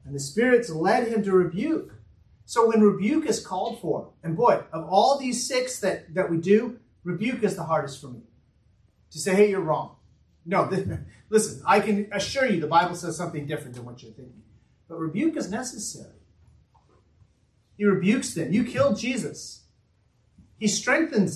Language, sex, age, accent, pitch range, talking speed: English, male, 40-59, American, 155-215 Hz, 170 wpm